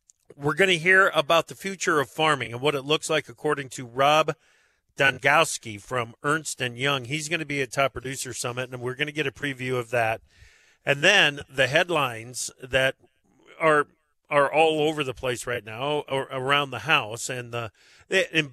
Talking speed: 190 wpm